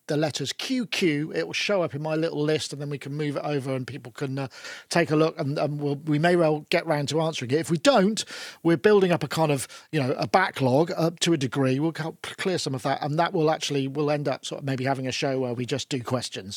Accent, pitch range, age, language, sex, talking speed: British, 145-185 Hz, 40-59, English, male, 280 wpm